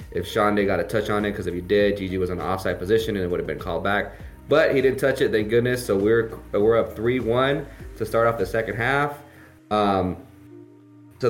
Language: English